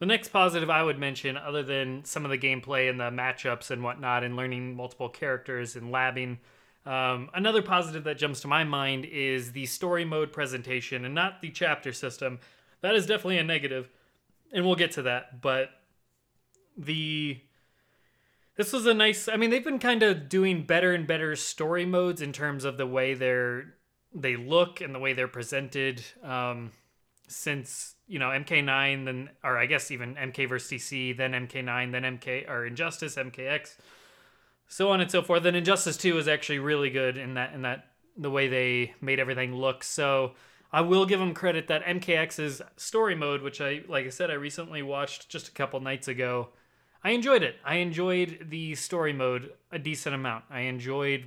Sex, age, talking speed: male, 20-39, 185 wpm